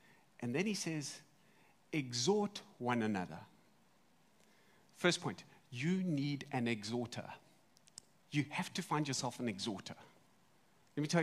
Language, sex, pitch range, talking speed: English, male, 145-195 Hz, 125 wpm